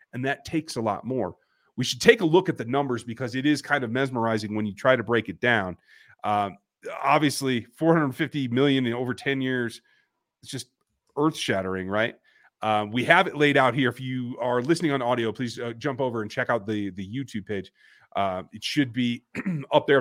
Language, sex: English, male